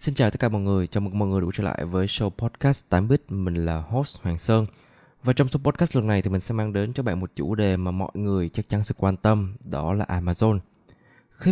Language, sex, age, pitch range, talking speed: Vietnamese, male, 20-39, 95-125 Hz, 260 wpm